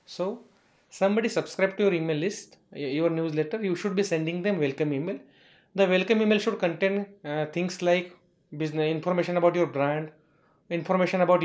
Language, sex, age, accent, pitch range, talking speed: English, male, 30-49, Indian, 155-195 Hz, 160 wpm